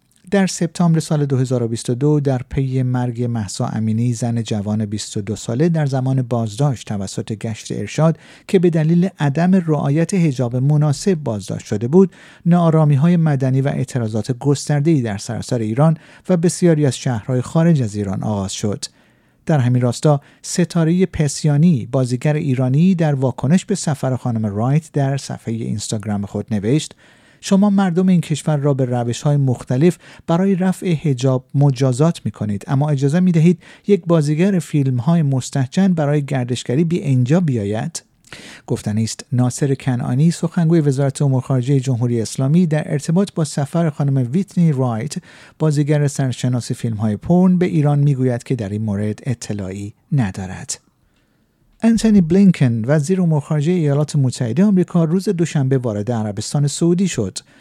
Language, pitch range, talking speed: Persian, 125-165 Hz, 145 wpm